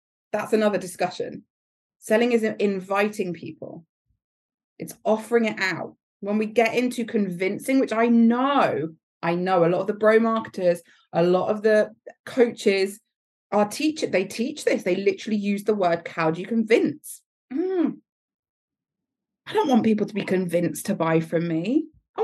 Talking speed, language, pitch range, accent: 160 wpm, English, 185-260 Hz, British